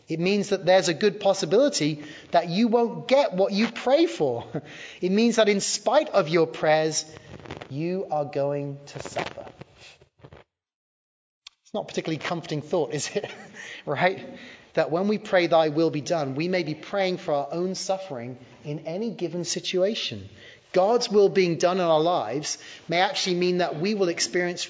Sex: male